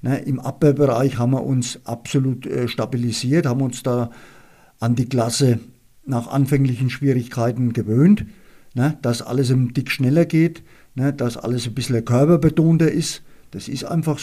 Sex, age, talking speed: male, 50-69, 140 wpm